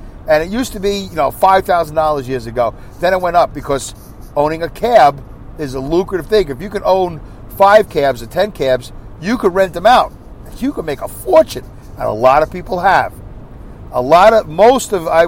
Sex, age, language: male, 50-69, English